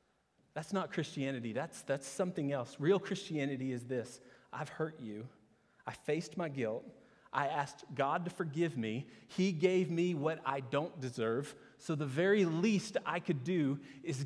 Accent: American